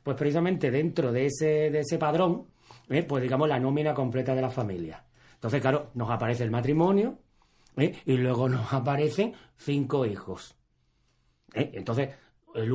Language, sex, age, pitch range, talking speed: Spanish, male, 30-49, 125-155 Hz, 155 wpm